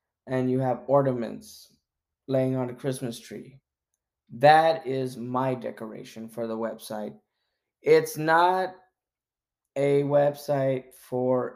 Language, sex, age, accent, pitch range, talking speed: English, male, 20-39, American, 115-140 Hz, 110 wpm